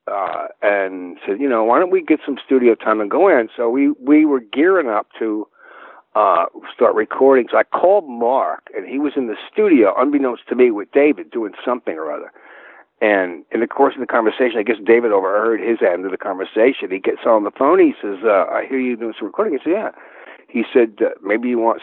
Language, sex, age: English, male, 60-79